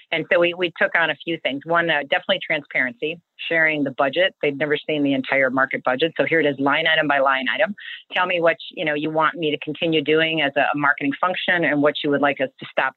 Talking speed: 265 wpm